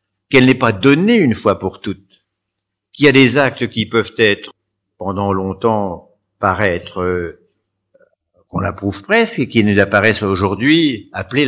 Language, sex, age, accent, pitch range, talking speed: French, male, 50-69, French, 100-130 Hz, 155 wpm